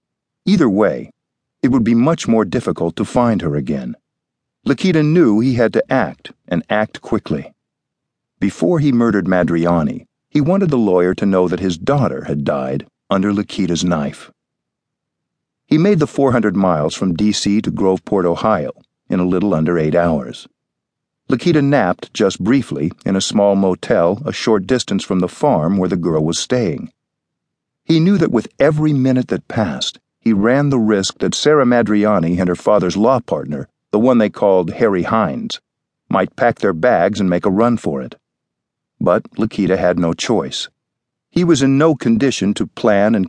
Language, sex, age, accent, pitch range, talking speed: English, male, 50-69, American, 90-120 Hz, 170 wpm